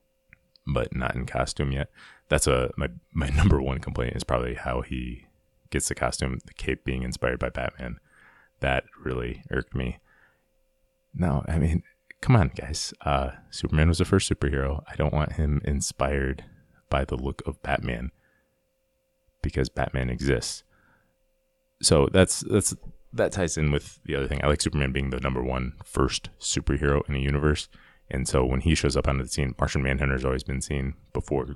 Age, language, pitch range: 30-49, English, 65-85 Hz